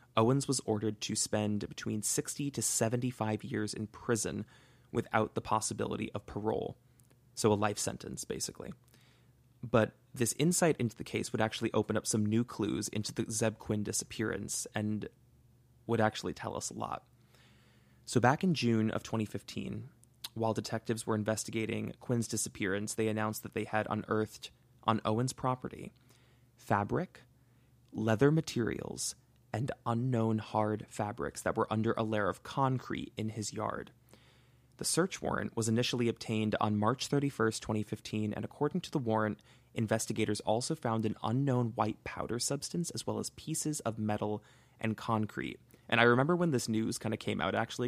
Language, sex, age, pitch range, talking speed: English, male, 20-39, 110-125 Hz, 160 wpm